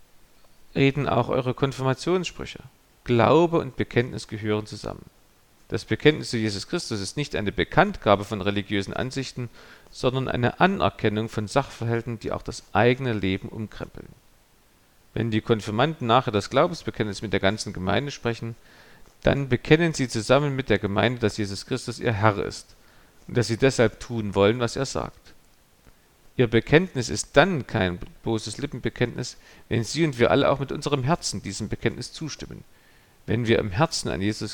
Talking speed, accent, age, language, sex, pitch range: 155 wpm, German, 40-59, German, male, 105-135 Hz